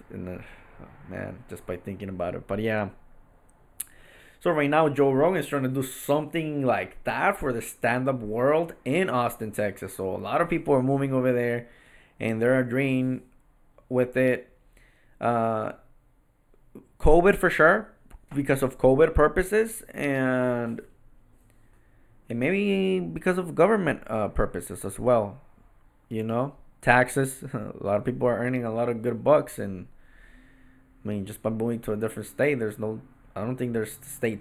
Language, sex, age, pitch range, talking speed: English, male, 20-39, 105-130 Hz, 155 wpm